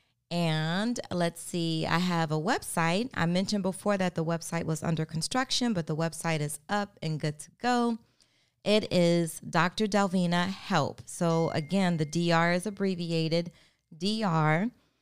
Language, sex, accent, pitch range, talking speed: English, female, American, 150-185 Hz, 150 wpm